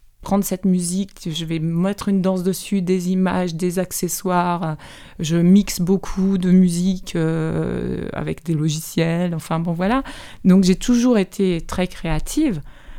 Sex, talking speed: female, 145 wpm